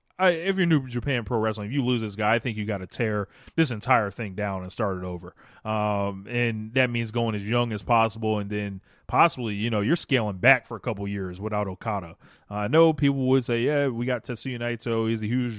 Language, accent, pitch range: English, American, 105-125 Hz